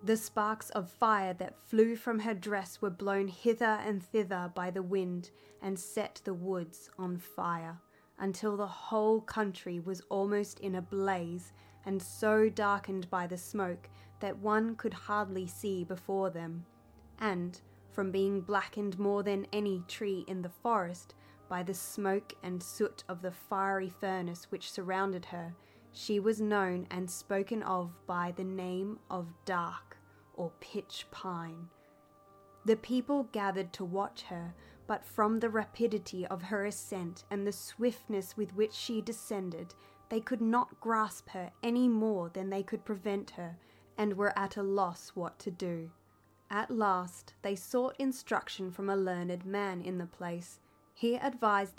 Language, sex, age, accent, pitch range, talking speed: English, female, 20-39, Australian, 180-215 Hz, 160 wpm